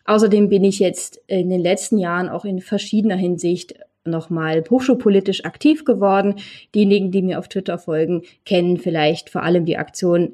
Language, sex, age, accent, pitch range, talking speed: German, female, 20-39, German, 185-225 Hz, 165 wpm